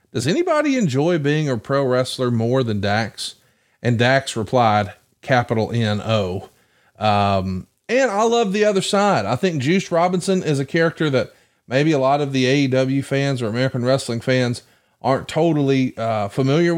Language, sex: English, male